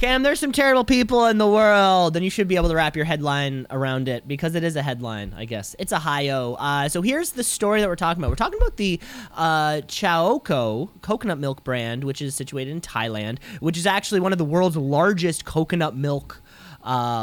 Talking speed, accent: 220 wpm, American